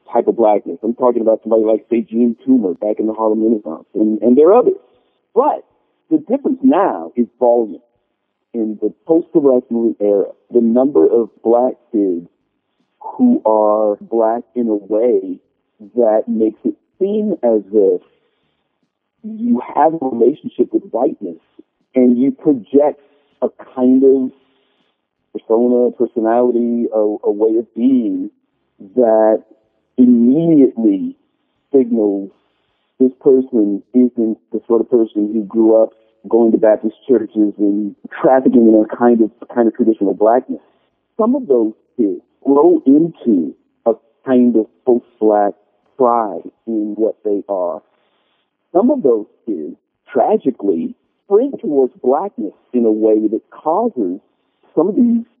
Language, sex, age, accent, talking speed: English, male, 50-69, American, 135 wpm